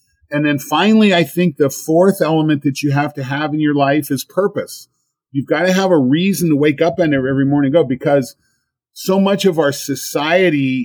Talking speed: 205 wpm